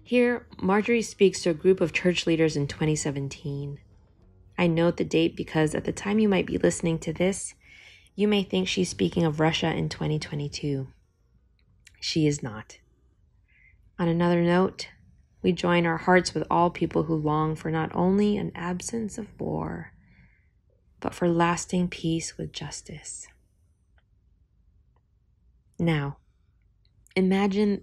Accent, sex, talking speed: American, female, 140 wpm